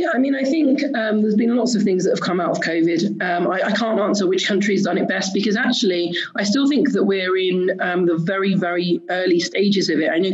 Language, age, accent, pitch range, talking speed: English, 30-49, British, 170-210 Hz, 265 wpm